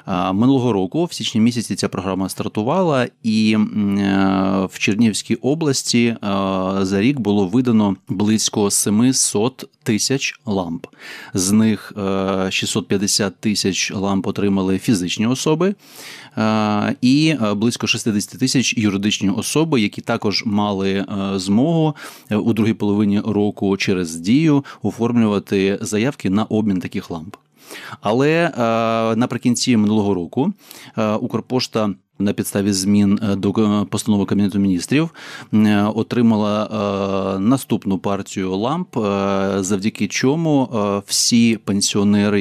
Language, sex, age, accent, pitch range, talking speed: Ukrainian, male, 30-49, native, 100-115 Hz, 100 wpm